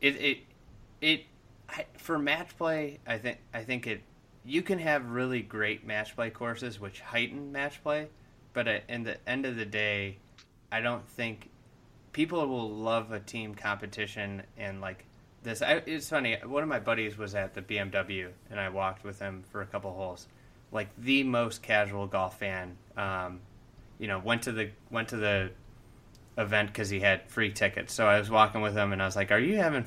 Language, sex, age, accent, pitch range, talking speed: English, male, 20-39, American, 100-120 Hz, 195 wpm